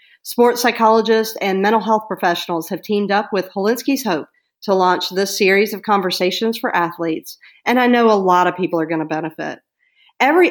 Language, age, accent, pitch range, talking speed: English, 40-59, American, 190-250 Hz, 185 wpm